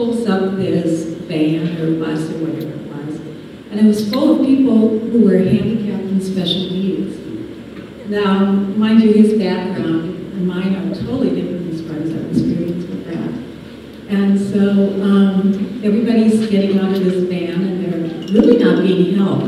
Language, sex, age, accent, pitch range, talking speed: English, female, 60-79, American, 185-220 Hz, 165 wpm